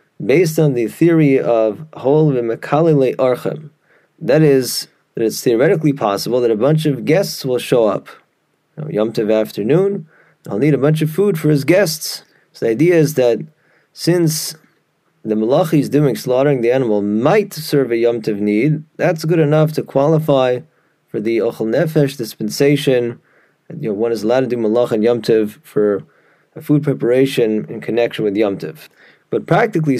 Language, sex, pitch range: English, male, 120-155 Hz